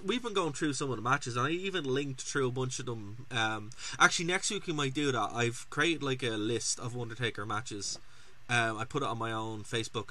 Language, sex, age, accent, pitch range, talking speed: English, male, 20-39, Irish, 110-130 Hz, 245 wpm